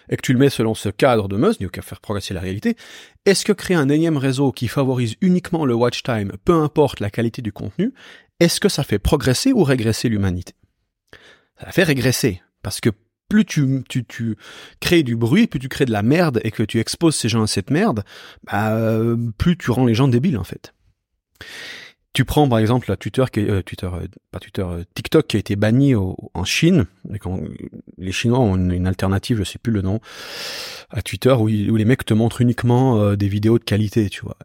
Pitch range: 100-130 Hz